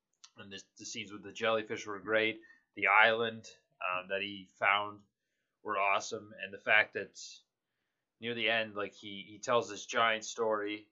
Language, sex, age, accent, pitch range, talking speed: English, male, 20-39, American, 100-125 Hz, 170 wpm